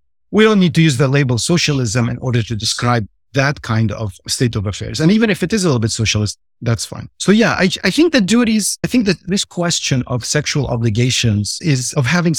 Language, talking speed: English, 230 wpm